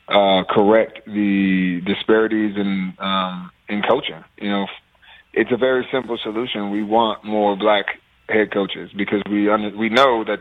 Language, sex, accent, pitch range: English, male, American, 100-115 Hz